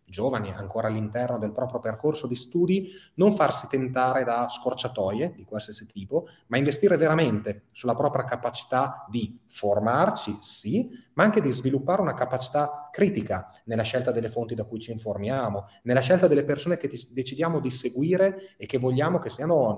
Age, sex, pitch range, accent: 30-49, male, 110-140 Hz, native